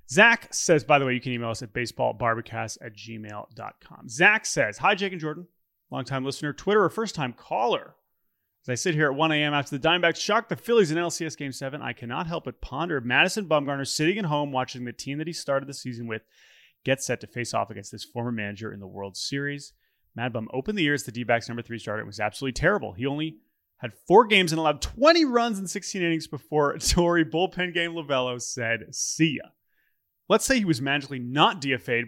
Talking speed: 215 wpm